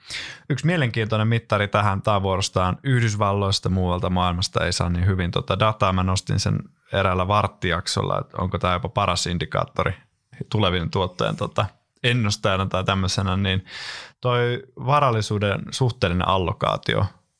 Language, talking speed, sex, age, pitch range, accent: Finnish, 125 wpm, male, 20-39, 95-115 Hz, native